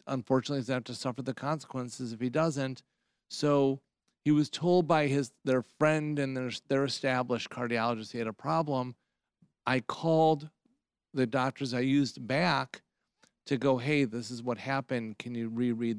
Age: 40-59